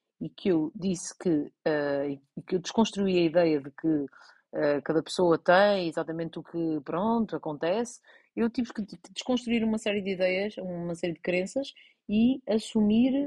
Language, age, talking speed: Portuguese, 30-49, 165 wpm